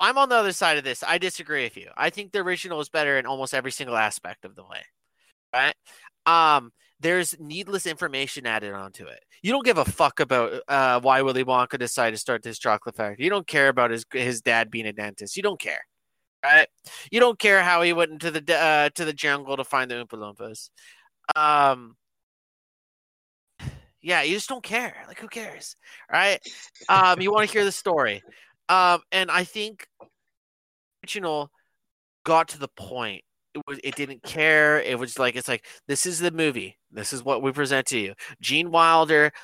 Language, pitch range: English, 125-165 Hz